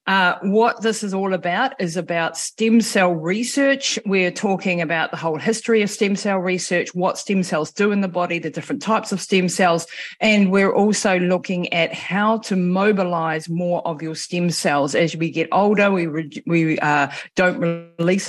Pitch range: 165-200 Hz